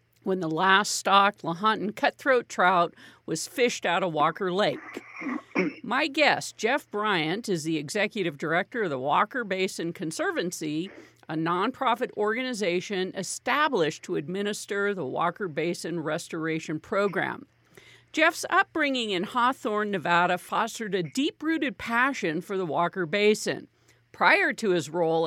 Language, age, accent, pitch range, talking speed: English, 50-69, American, 175-245 Hz, 130 wpm